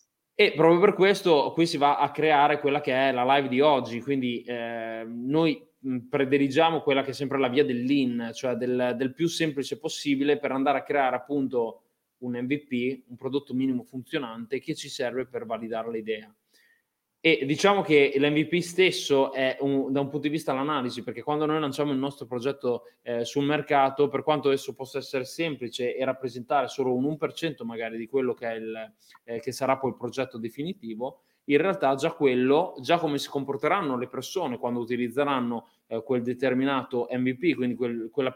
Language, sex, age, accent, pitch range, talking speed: Italian, male, 20-39, native, 125-155 Hz, 175 wpm